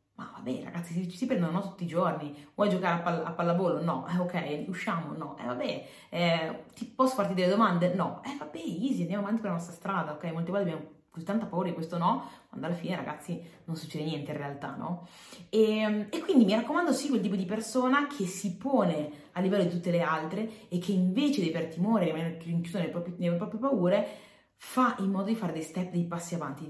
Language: Italian